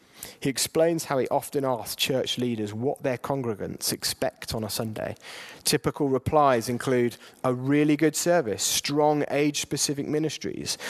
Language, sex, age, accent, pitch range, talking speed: English, male, 30-49, British, 120-155 Hz, 140 wpm